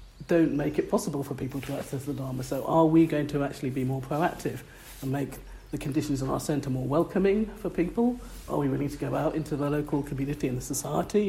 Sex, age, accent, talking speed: male, 40-59, British, 230 wpm